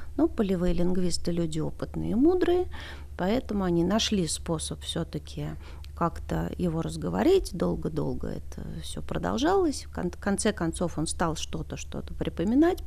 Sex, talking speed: female, 125 wpm